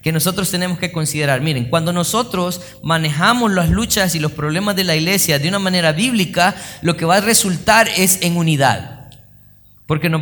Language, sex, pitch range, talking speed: Spanish, male, 140-195 Hz, 180 wpm